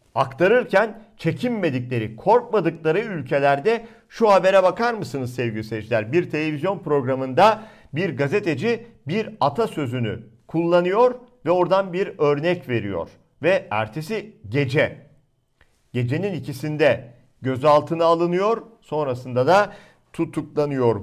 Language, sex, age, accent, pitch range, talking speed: Turkish, male, 50-69, native, 125-185 Hz, 95 wpm